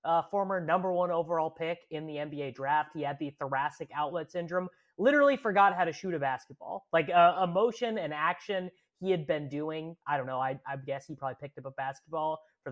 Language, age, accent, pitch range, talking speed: English, 20-39, American, 140-185 Hz, 220 wpm